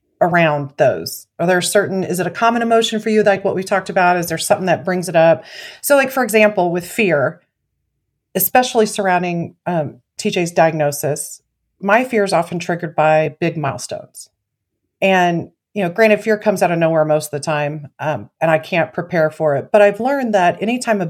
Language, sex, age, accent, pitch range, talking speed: English, female, 40-59, American, 155-200 Hz, 195 wpm